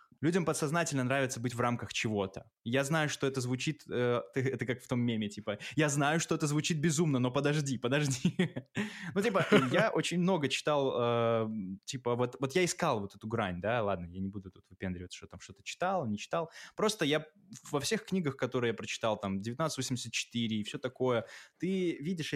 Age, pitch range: 20-39, 110-145 Hz